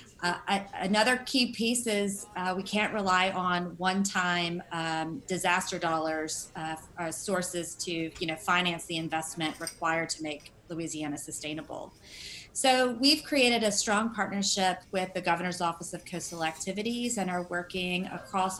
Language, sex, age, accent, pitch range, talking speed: English, female, 30-49, American, 170-200 Hz, 150 wpm